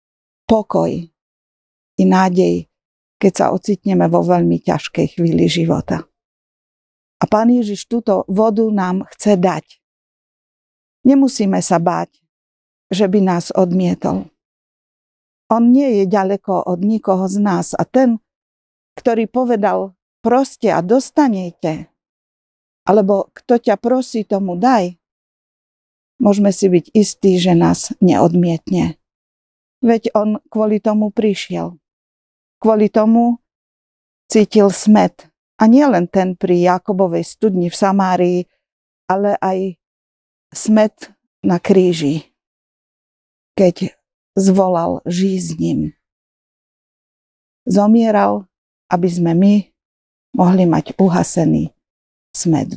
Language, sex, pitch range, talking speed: Slovak, female, 175-215 Hz, 100 wpm